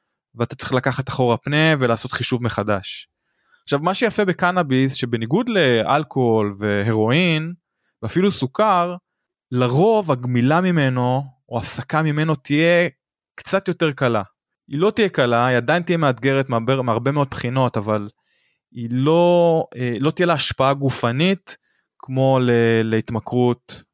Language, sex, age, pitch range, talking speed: Hebrew, male, 20-39, 120-155 Hz, 120 wpm